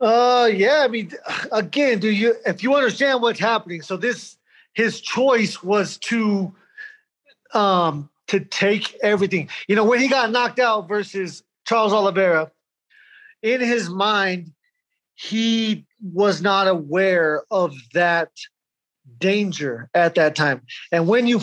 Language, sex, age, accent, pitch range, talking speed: English, male, 30-49, American, 165-225 Hz, 135 wpm